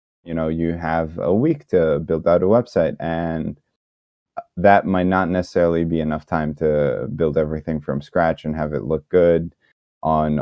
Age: 20-39